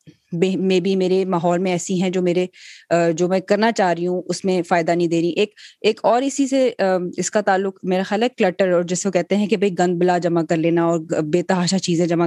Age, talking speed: 20-39, 245 wpm